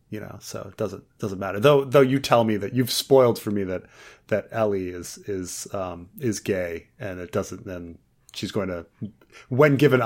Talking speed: 205 wpm